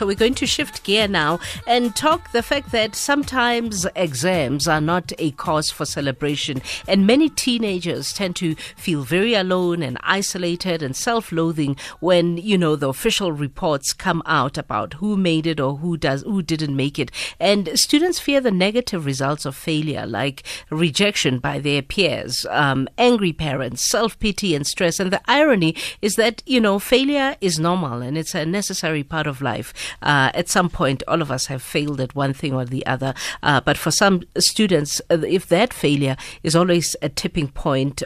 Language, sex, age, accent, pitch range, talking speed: English, female, 50-69, South African, 145-195 Hz, 180 wpm